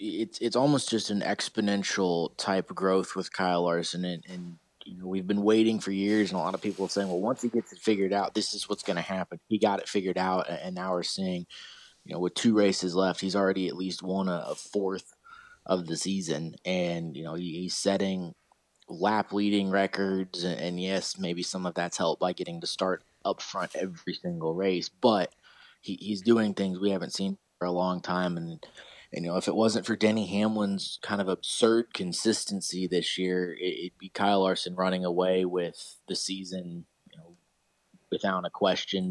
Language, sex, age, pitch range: Thai, male, 20-39, 90-100 Hz